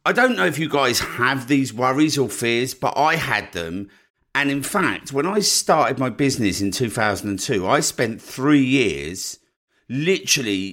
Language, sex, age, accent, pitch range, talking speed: English, male, 50-69, British, 105-145 Hz, 170 wpm